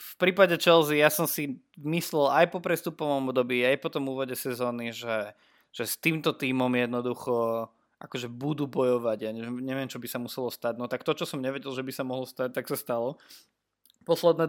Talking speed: 200 wpm